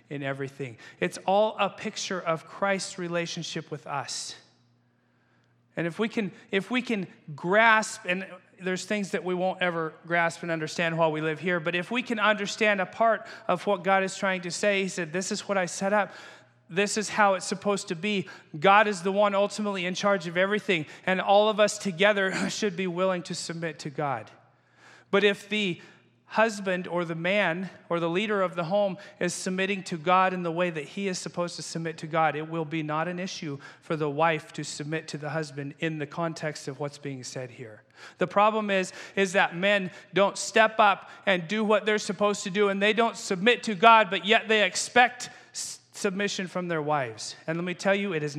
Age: 40-59